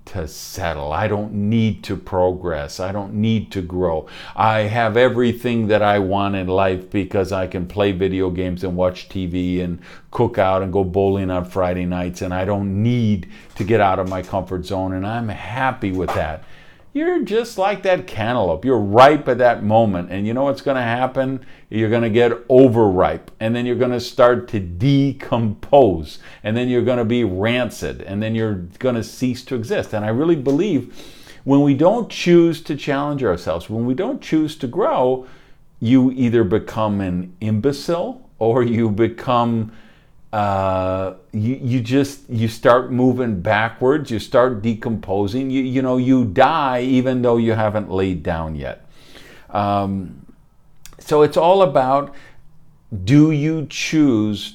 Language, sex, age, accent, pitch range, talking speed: English, male, 50-69, American, 95-135 Hz, 170 wpm